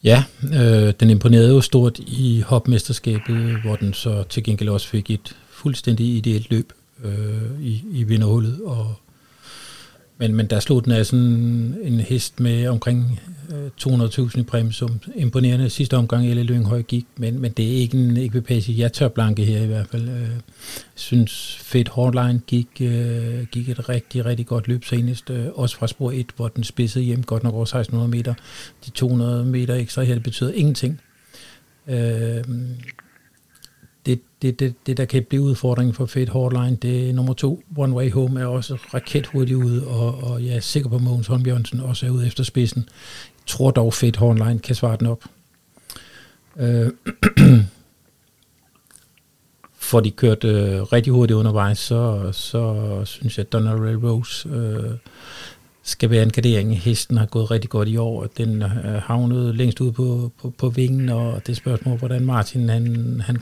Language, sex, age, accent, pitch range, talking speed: Danish, male, 50-69, native, 115-125 Hz, 170 wpm